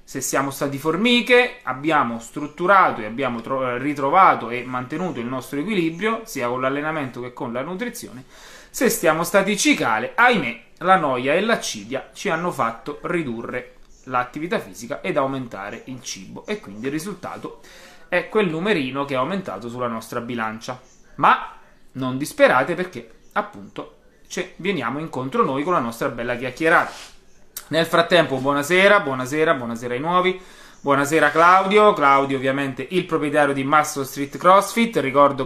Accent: native